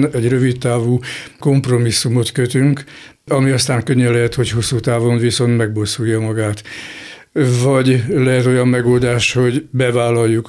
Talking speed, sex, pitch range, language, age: 115 wpm, male, 115-130 Hz, Hungarian, 60-79